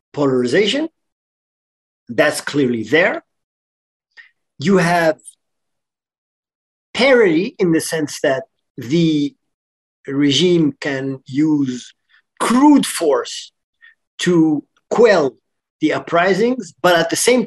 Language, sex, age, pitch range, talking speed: English, male, 50-69, 135-200 Hz, 85 wpm